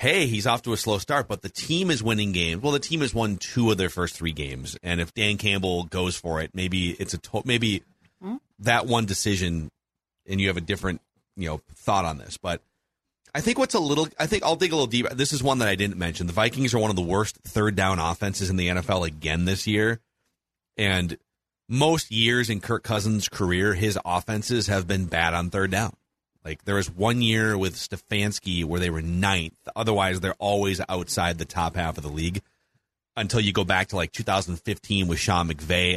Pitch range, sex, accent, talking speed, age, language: 90-115 Hz, male, American, 215 wpm, 30-49, English